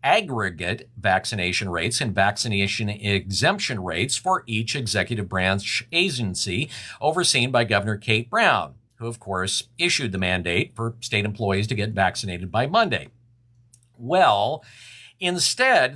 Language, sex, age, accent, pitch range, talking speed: English, male, 50-69, American, 105-150 Hz, 125 wpm